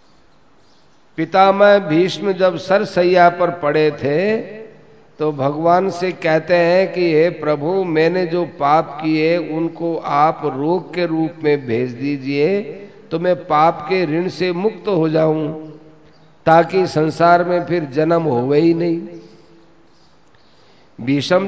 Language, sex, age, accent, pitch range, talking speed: Hindi, male, 50-69, native, 155-190 Hz, 130 wpm